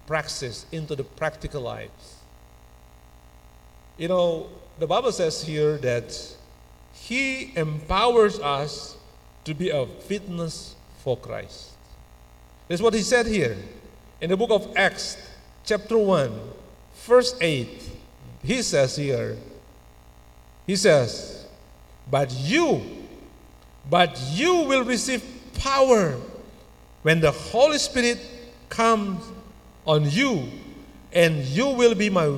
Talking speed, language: 110 wpm, Indonesian